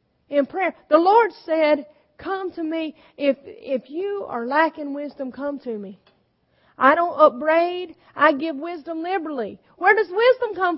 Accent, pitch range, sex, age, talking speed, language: American, 280-345 Hz, female, 40-59, 155 wpm, English